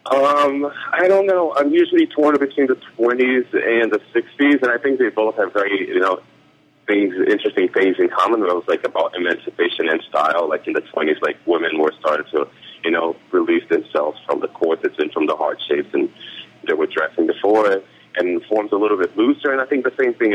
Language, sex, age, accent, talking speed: English, male, 30-49, American, 205 wpm